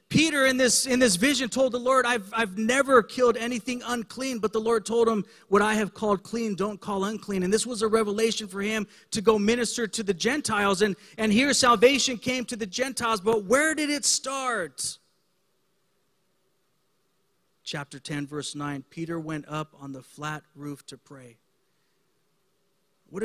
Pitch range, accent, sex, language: 170-215 Hz, American, male, English